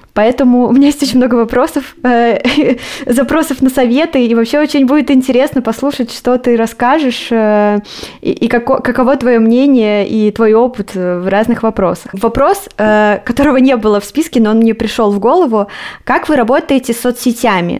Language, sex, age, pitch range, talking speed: Russian, female, 20-39, 200-250 Hz, 160 wpm